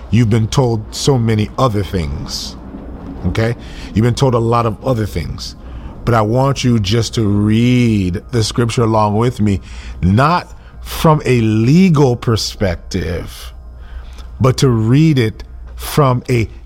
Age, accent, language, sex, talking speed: 40-59, American, English, male, 140 wpm